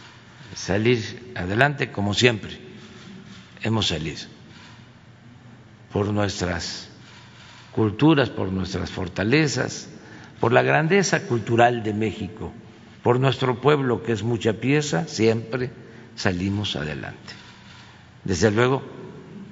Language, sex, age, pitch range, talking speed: Spanish, male, 50-69, 100-130 Hz, 90 wpm